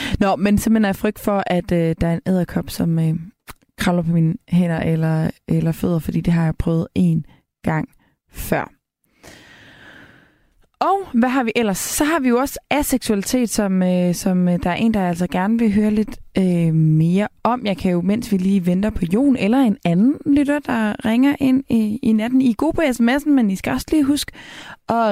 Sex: female